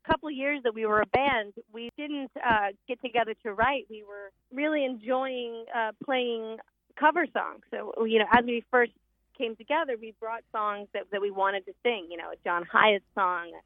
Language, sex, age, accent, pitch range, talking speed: English, female, 30-49, American, 205-255 Hz, 200 wpm